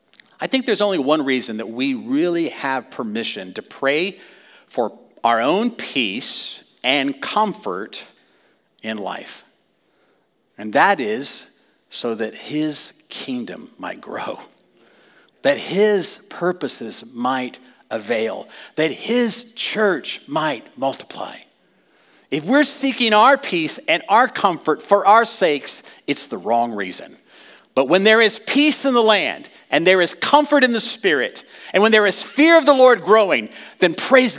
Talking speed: 140 wpm